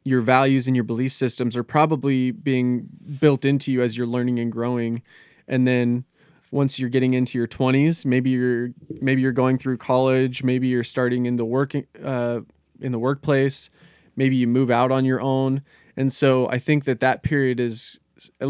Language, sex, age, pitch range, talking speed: English, male, 20-39, 120-140 Hz, 190 wpm